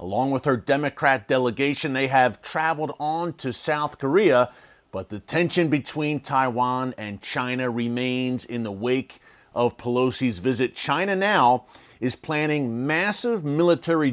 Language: English